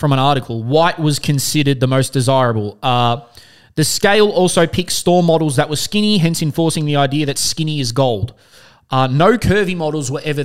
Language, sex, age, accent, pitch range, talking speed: English, male, 20-39, Australian, 115-155 Hz, 190 wpm